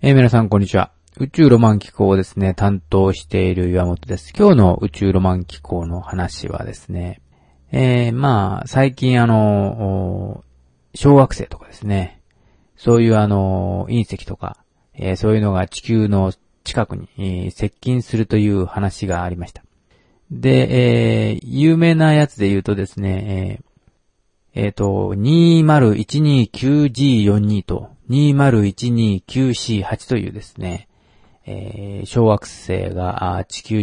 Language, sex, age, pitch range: Japanese, male, 40-59, 95-125 Hz